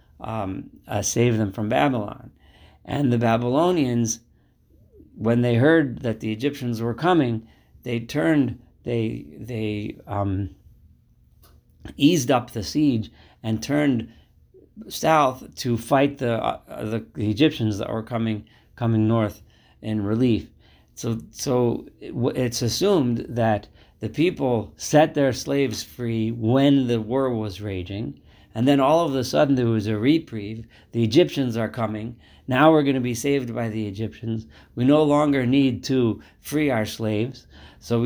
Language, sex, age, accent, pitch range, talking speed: English, male, 50-69, American, 105-125 Hz, 140 wpm